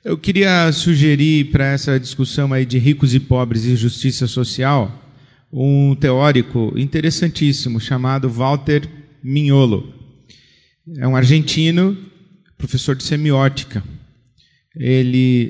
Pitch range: 130-150 Hz